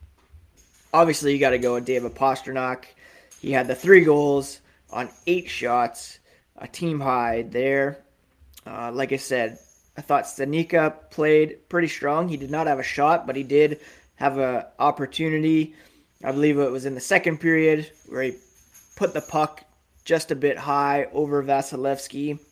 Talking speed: 165 wpm